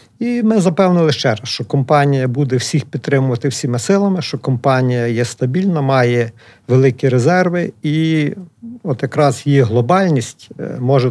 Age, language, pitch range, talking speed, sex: 50-69, Ukrainian, 120-155 Hz, 135 wpm, male